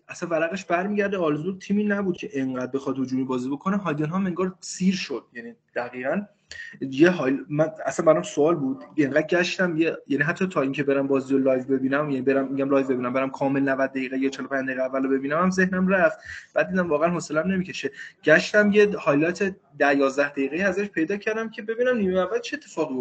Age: 20-39